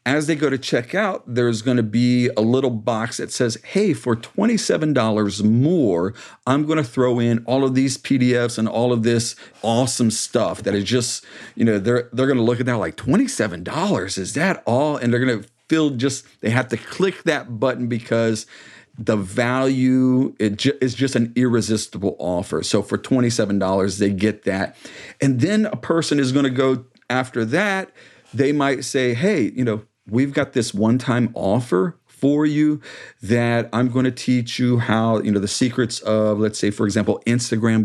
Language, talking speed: English, 185 wpm